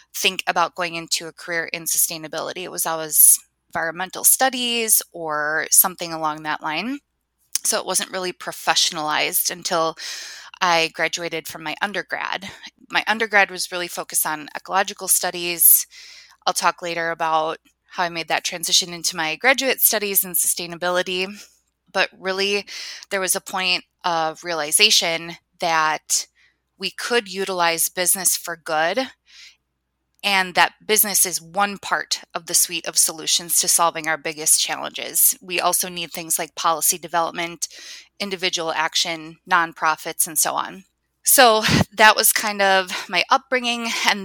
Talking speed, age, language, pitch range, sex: 140 wpm, 20-39, English, 165-190 Hz, female